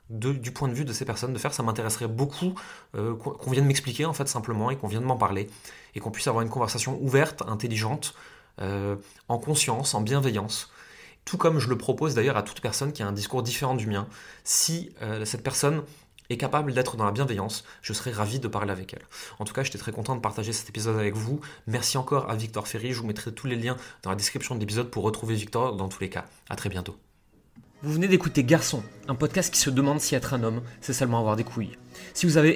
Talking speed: 240 wpm